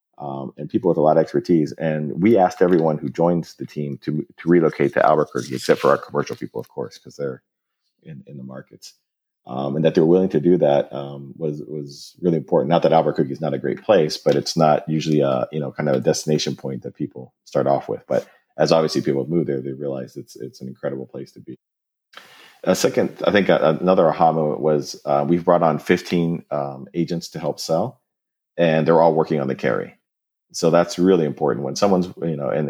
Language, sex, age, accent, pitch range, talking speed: English, male, 40-59, American, 70-80 Hz, 220 wpm